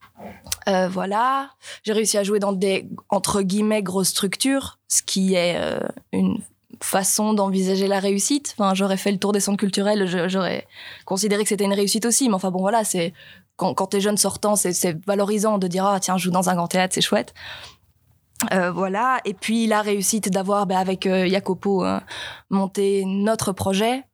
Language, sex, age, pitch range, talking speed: French, female, 20-39, 190-215 Hz, 200 wpm